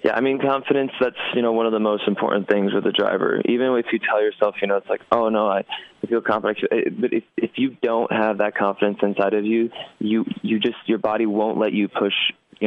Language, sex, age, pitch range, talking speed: English, male, 20-39, 100-115 Hz, 240 wpm